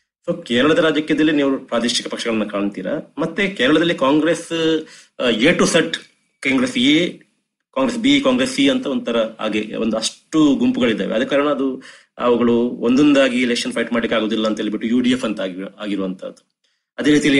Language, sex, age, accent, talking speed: Kannada, male, 30-49, native, 140 wpm